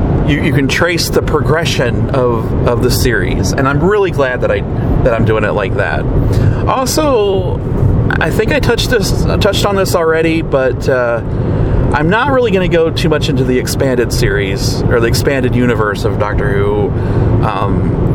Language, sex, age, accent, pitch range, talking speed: English, male, 30-49, American, 120-140 Hz, 190 wpm